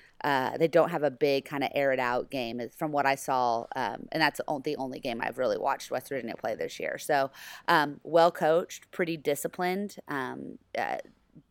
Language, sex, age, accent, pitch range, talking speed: English, female, 30-49, American, 130-150 Hz, 200 wpm